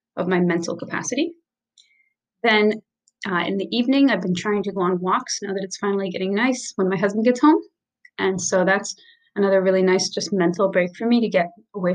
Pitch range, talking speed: 190-235 Hz, 205 wpm